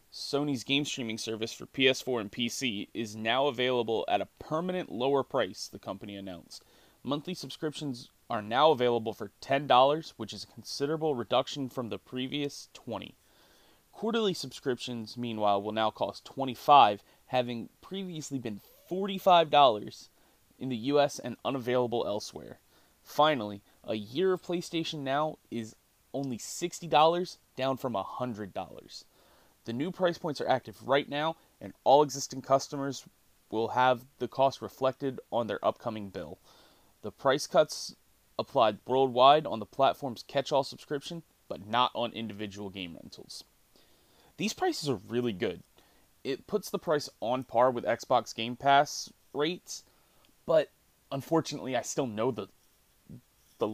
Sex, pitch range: male, 115-150 Hz